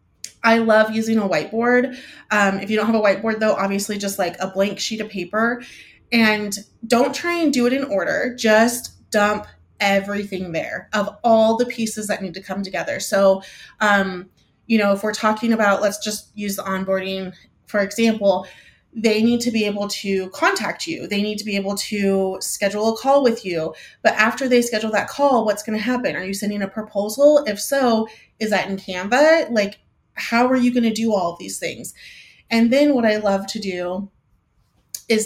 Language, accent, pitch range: English, American, 195-230 Hz